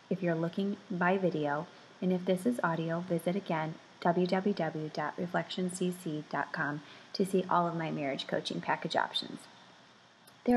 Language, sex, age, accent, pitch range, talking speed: English, female, 20-39, American, 170-215 Hz, 130 wpm